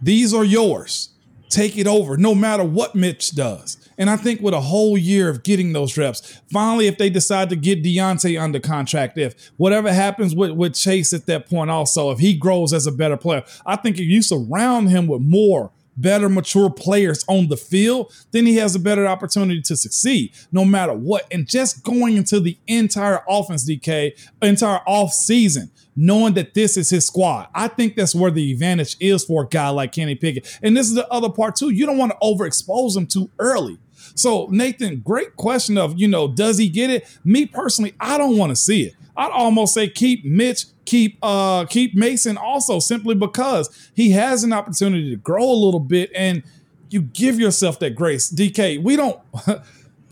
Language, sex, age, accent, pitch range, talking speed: English, male, 40-59, American, 165-220 Hz, 200 wpm